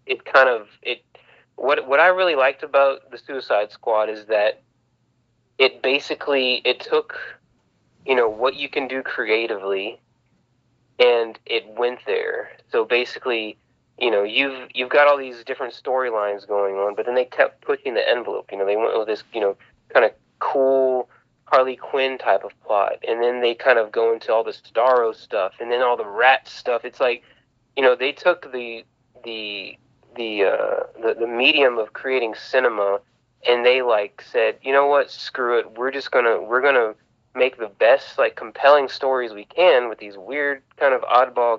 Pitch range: 115-145 Hz